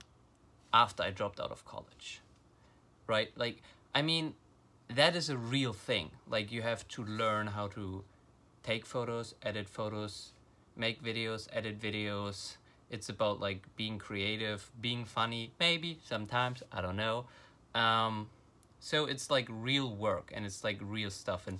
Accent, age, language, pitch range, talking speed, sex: German, 30-49, English, 105-130 Hz, 150 wpm, male